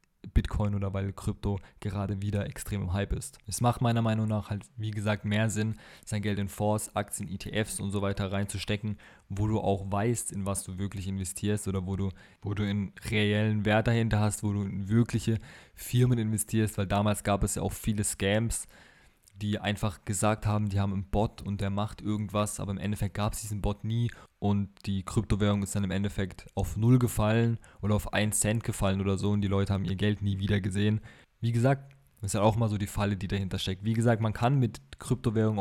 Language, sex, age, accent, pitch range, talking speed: German, male, 20-39, German, 100-110 Hz, 215 wpm